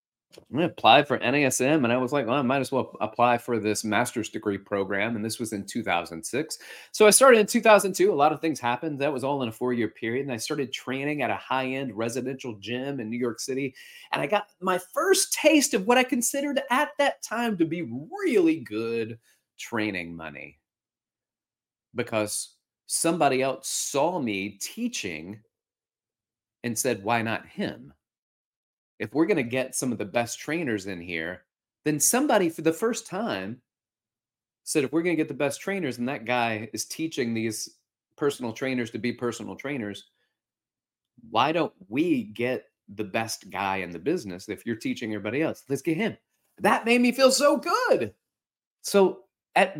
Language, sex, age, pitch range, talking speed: English, male, 30-49, 115-195 Hz, 180 wpm